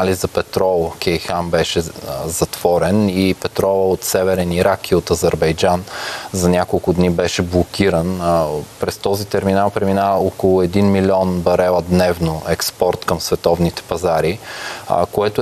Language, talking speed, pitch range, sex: Bulgarian, 125 wpm, 90-105 Hz, male